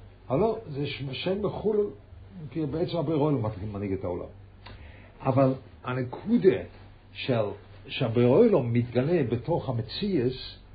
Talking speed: 95 wpm